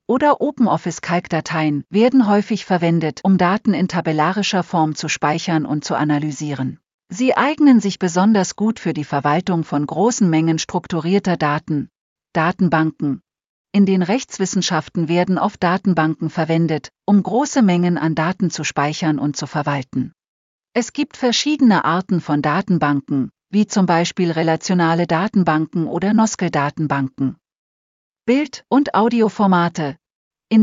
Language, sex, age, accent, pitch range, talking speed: German, female, 50-69, German, 160-205 Hz, 125 wpm